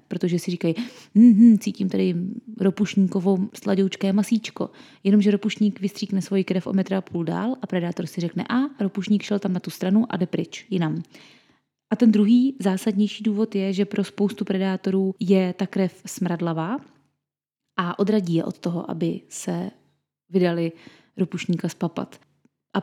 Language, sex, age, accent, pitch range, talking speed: Czech, female, 20-39, native, 185-225 Hz, 155 wpm